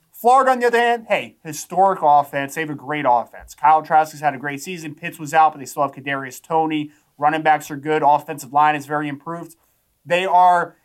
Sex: male